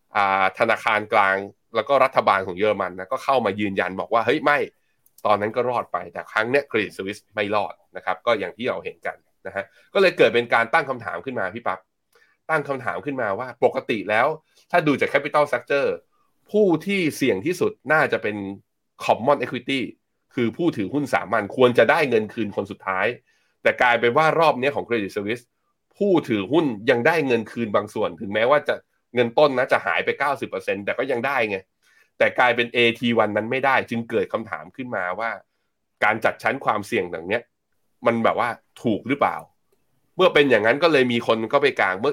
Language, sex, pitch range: Thai, male, 105-155 Hz